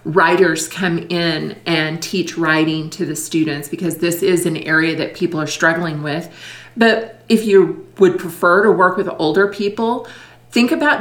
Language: English